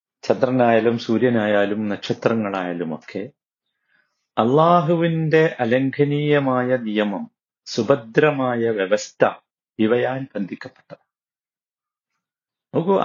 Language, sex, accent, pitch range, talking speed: Malayalam, male, native, 135-160 Hz, 55 wpm